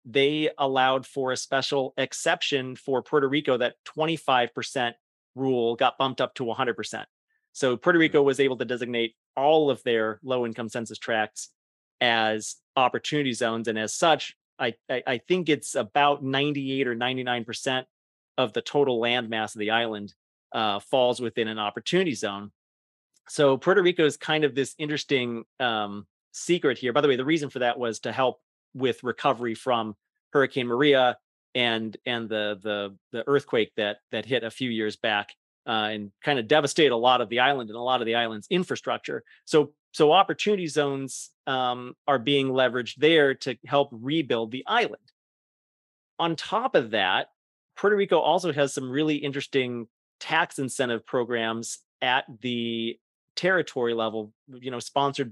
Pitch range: 115-140 Hz